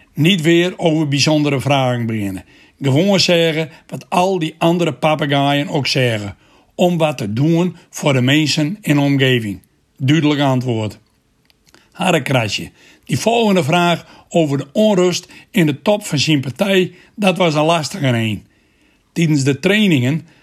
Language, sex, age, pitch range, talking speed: Dutch, male, 60-79, 135-175 Hz, 140 wpm